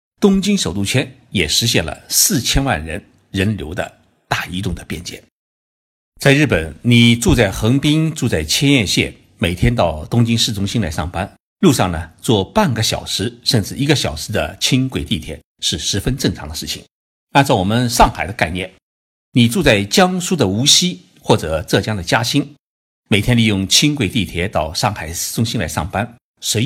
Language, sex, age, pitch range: Chinese, male, 60-79, 95-140 Hz